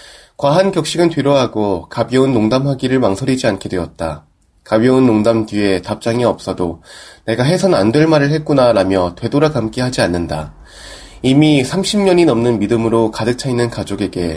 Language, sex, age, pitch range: Korean, male, 20-39, 100-155 Hz